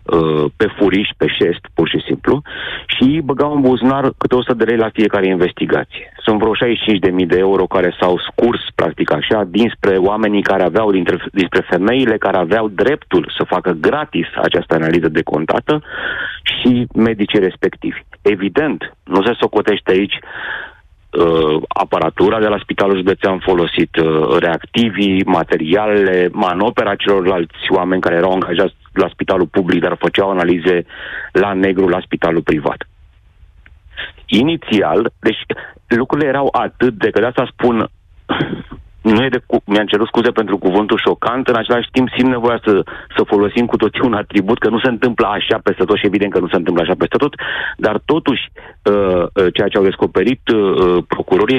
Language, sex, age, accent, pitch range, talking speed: Romanian, male, 30-49, native, 90-120 Hz, 150 wpm